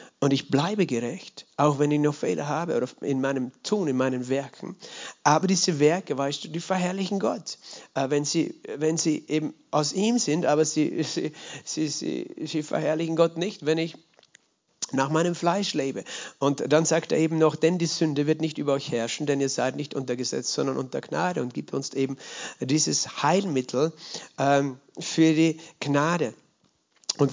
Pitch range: 140-170 Hz